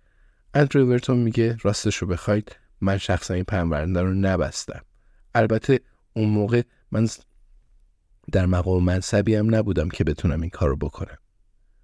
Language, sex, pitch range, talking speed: Persian, male, 90-115 Hz, 135 wpm